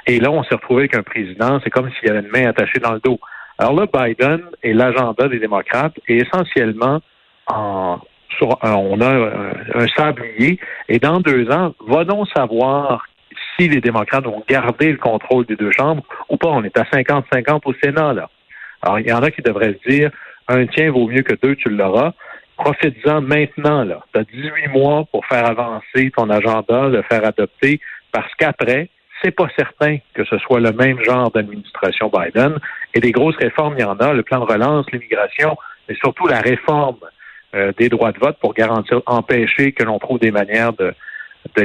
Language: French